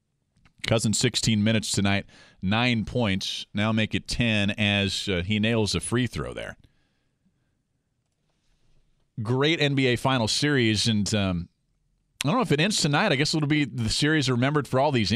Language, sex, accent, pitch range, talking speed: English, male, American, 110-150 Hz, 160 wpm